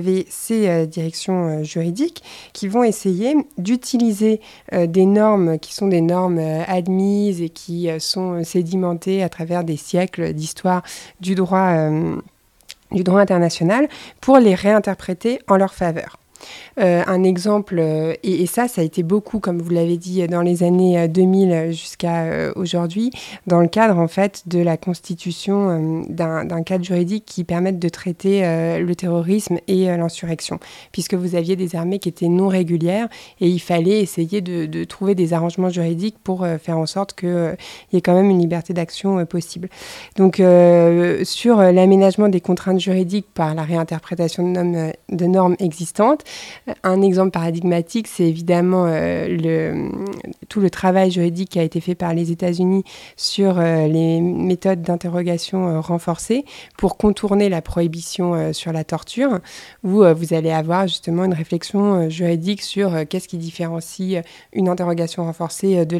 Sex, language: female, French